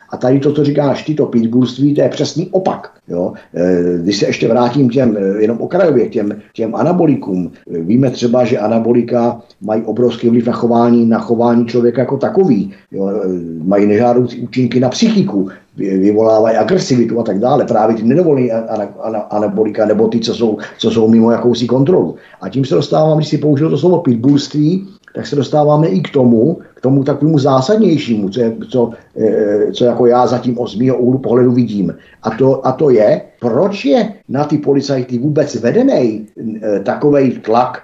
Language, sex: Czech, male